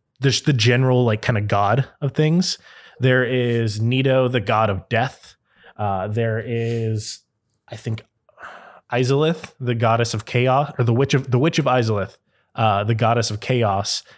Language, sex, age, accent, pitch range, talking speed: English, male, 20-39, American, 110-130 Hz, 165 wpm